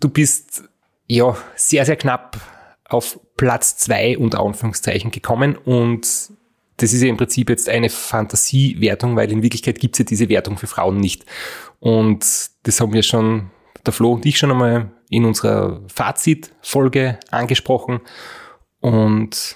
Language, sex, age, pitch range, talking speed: German, male, 30-49, 115-140 Hz, 145 wpm